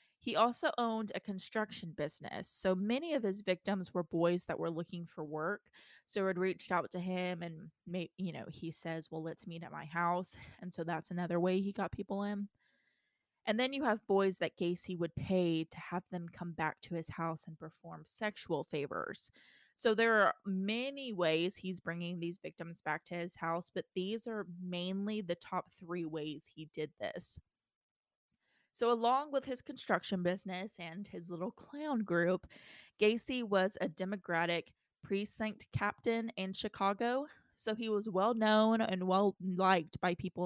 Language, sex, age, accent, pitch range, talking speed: English, female, 20-39, American, 170-205 Hz, 175 wpm